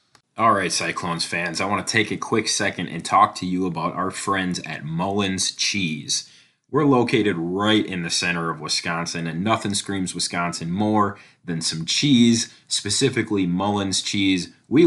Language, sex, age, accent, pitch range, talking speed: English, male, 30-49, American, 90-110 Hz, 160 wpm